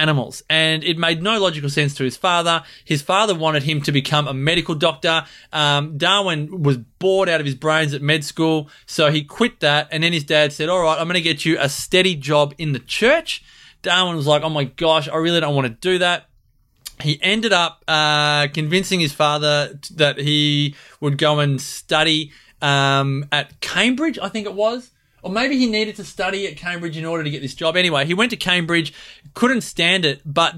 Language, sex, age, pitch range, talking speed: English, male, 20-39, 145-175 Hz, 210 wpm